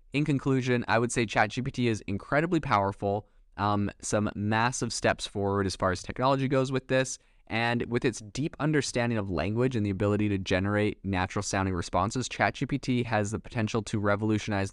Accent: American